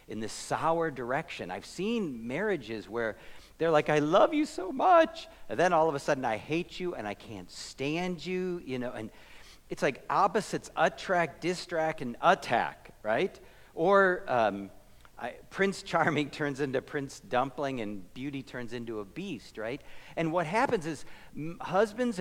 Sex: male